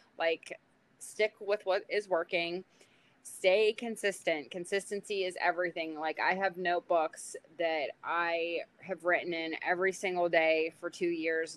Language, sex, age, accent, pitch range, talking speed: English, female, 20-39, American, 155-185 Hz, 135 wpm